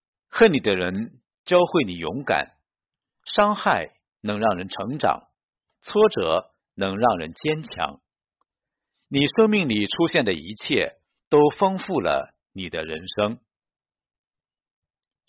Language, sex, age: Chinese, male, 50-69